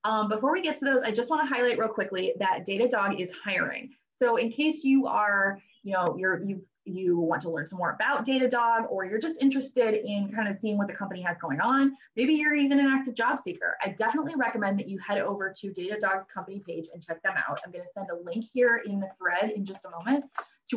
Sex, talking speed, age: female, 245 wpm, 20-39